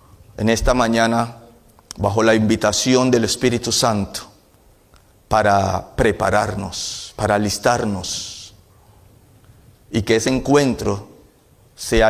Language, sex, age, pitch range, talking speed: Spanish, male, 40-59, 100-130 Hz, 90 wpm